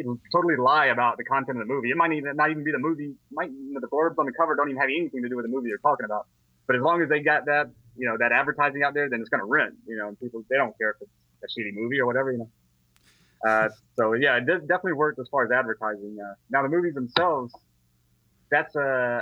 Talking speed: 270 wpm